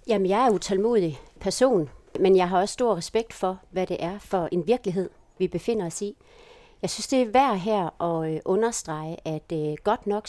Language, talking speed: Danish, 210 wpm